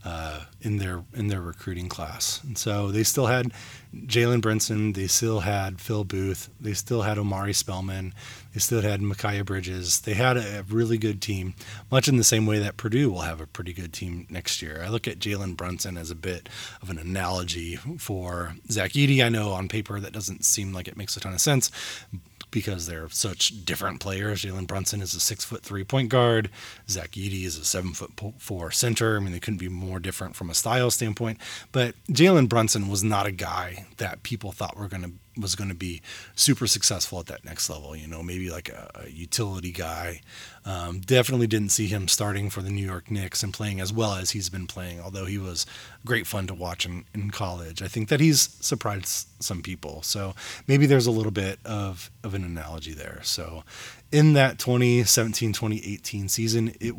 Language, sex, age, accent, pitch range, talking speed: English, male, 20-39, American, 90-115 Hz, 210 wpm